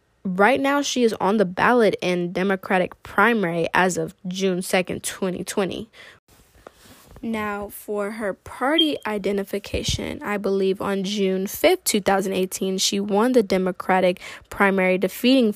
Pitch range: 190-225 Hz